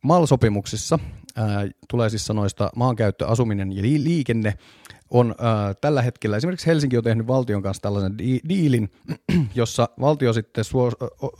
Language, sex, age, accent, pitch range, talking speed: Finnish, male, 30-49, native, 105-130 Hz, 140 wpm